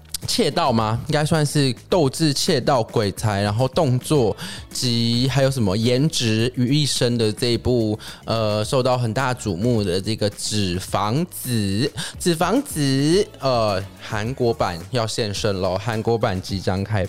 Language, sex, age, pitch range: Chinese, male, 20-39, 105-140 Hz